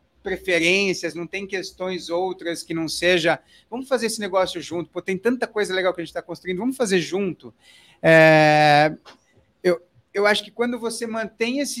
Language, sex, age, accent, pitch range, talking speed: Portuguese, male, 40-59, Brazilian, 170-205 Hz, 180 wpm